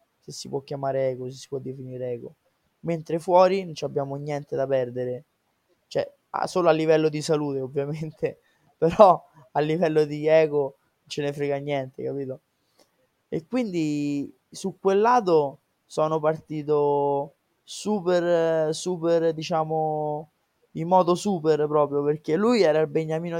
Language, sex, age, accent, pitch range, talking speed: Italian, male, 20-39, native, 140-160 Hz, 135 wpm